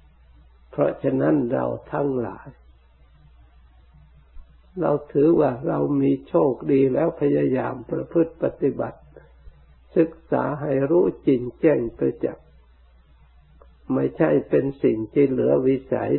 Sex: male